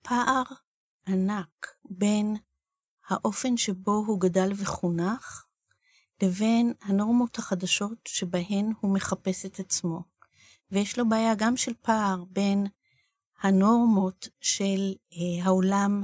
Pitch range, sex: 185-225 Hz, female